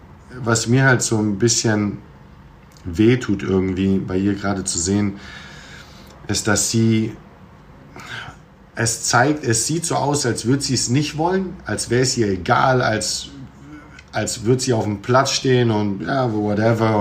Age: 50-69